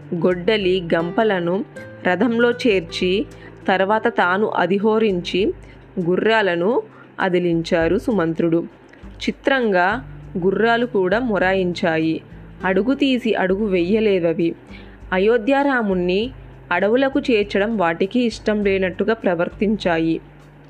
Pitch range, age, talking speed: 170-220 Hz, 20-39, 70 wpm